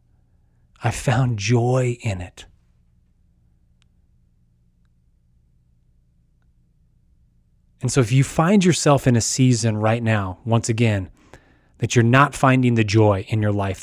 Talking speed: 115 wpm